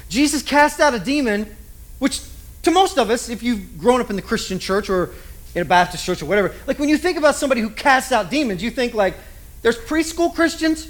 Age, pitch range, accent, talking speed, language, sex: 40-59, 190-275 Hz, American, 225 wpm, English, male